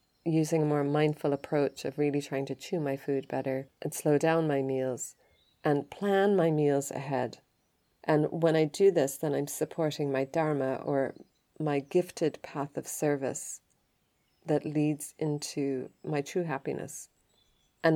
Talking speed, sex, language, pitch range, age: 155 wpm, female, English, 140-160 Hz, 30-49